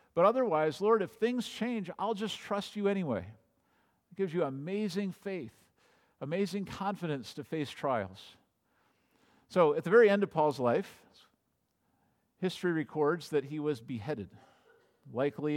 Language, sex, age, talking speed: English, male, 50-69, 140 wpm